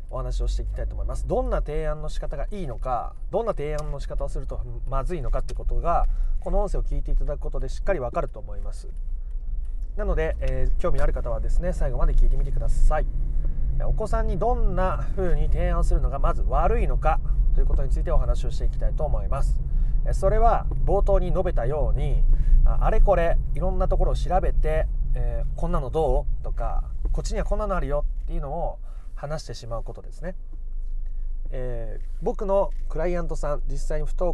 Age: 30-49